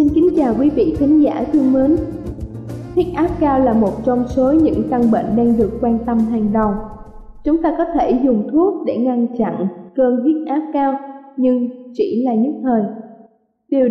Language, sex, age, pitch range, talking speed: Vietnamese, female, 20-39, 235-290 Hz, 190 wpm